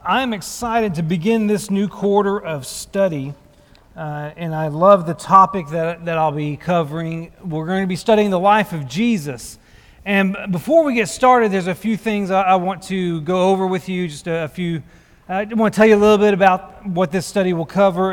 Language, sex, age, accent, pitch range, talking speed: English, male, 40-59, American, 170-210 Hz, 210 wpm